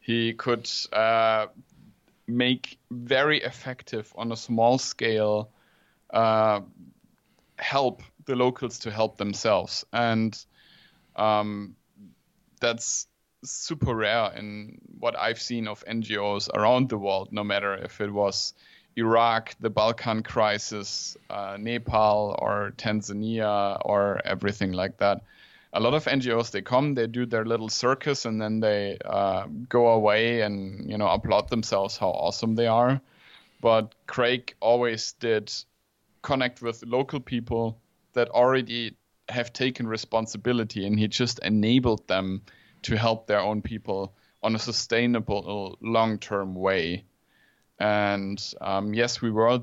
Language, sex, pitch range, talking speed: English, male, 105-120 Hz, 130 wpm